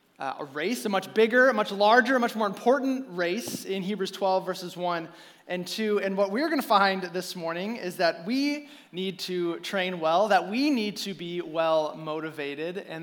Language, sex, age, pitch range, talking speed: English, male, 20-39, 165-210 Hz, 205 wpm